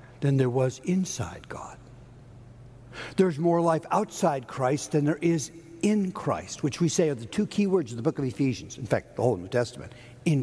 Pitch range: 120-180 Hz